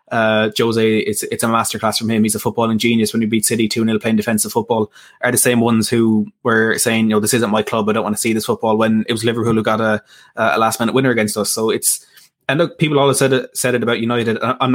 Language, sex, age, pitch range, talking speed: English, male, 20-39, 110-120 Hz, 275 wpm